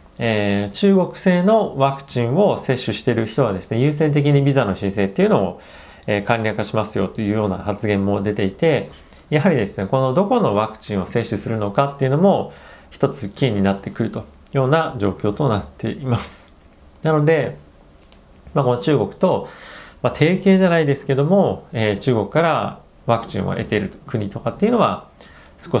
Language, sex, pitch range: Japanese, male, 100-140 Hz